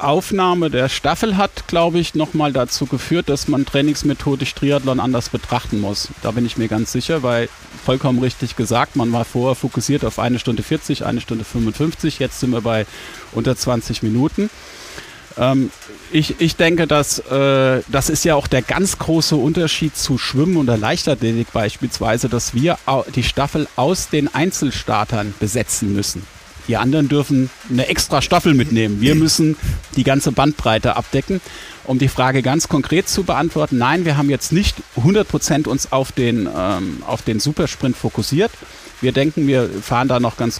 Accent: German